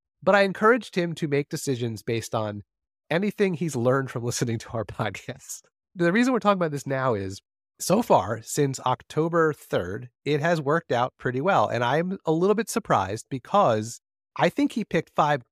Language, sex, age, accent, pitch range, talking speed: English, male, 30-49, American, 115-160 Hz, 185 wpm